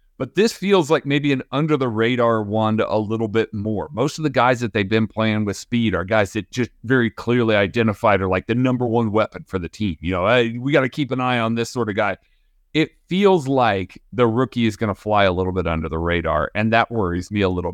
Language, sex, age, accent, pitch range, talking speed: English, male, 30-49, American, 105-130 Hz, 245 wpm